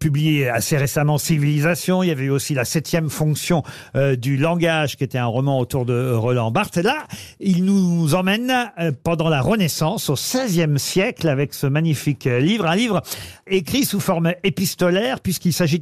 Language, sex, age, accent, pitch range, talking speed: French, male, 50-69, French, 140-185 Hz, 180 wpm